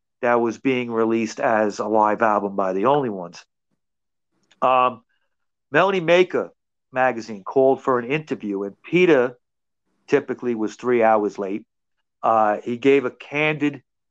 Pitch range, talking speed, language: 110-145 Hz, 135 wpm, English